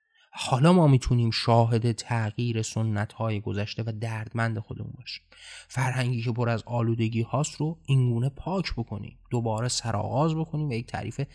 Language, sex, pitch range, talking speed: Persian, male, 115-130 Hz, 145 wpm